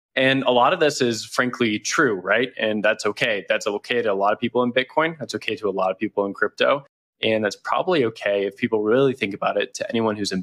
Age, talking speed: 20-39, 255 wpm